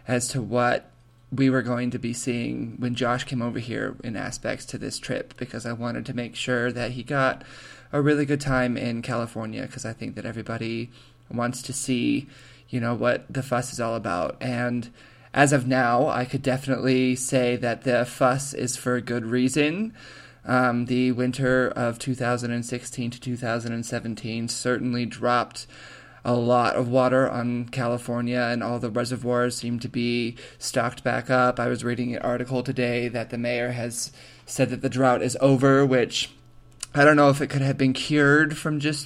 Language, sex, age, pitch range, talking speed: English, male, 20-39, 120-130 Hz, 185 wpm